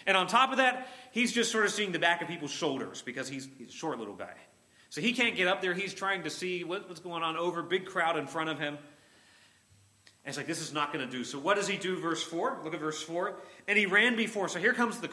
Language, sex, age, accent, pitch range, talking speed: English, male, 30-49, American, 130-180 Hz, 280 wpm